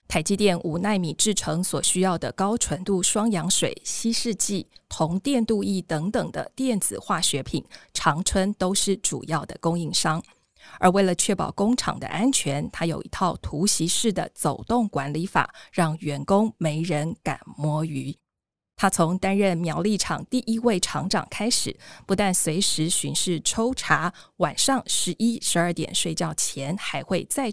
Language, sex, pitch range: Chinese, female, 160-210 Hz